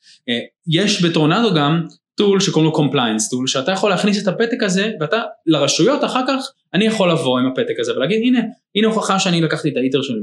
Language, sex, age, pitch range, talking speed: Hebrew, male, 20-39, 135-210 Hz, 200 wpm